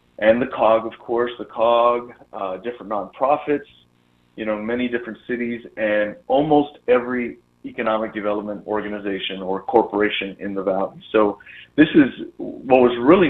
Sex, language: male, English